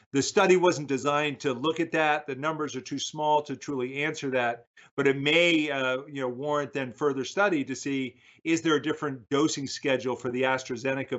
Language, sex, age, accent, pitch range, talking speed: English, male, 50-69, American, 125-145 Hz, 205 wpm